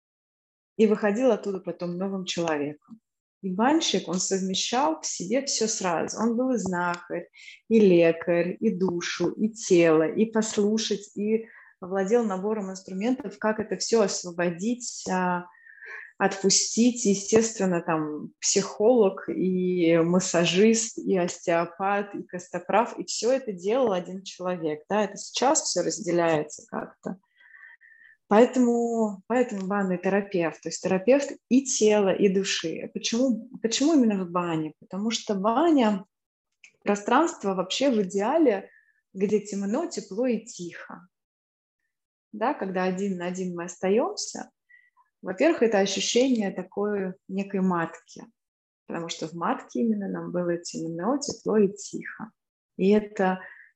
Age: 20-39